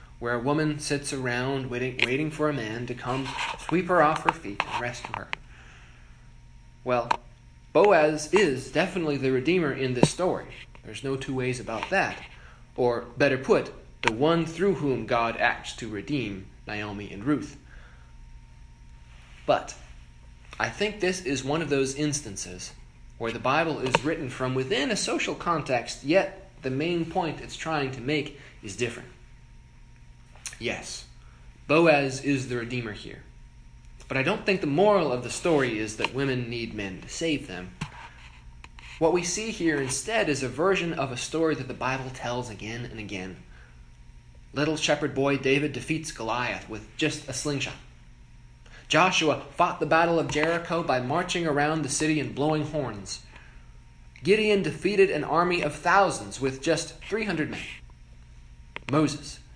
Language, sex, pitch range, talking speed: English, male, 100-155 Hz, 155 wpm